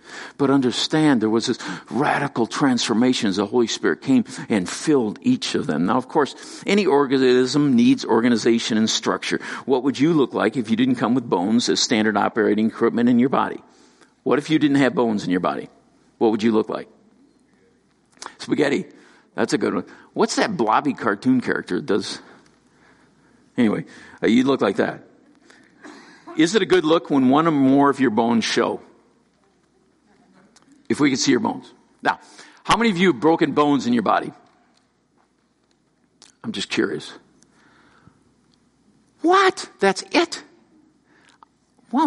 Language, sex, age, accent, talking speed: English, male, 50-69, American, 160 wpm